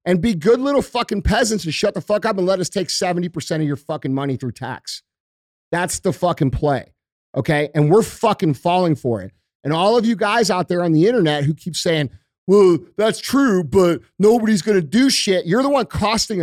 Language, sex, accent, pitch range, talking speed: English, male, American, 155-215 Hz, 215 wpm